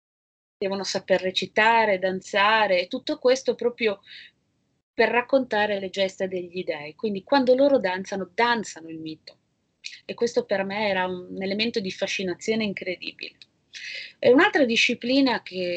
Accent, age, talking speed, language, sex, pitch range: native, 30-49, 130 wpm, Italian, female, 175-225 Hz